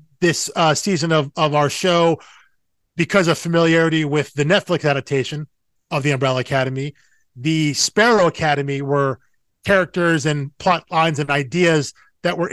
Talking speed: 145 wpm